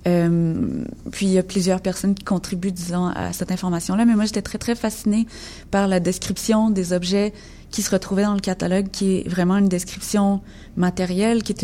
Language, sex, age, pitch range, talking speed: French, female, 20-39, 165-190 Hz, 195 wpm